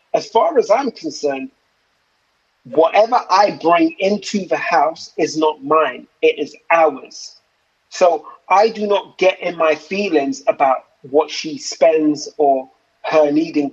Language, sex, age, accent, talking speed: English, male, 30-49, British, 140 wpm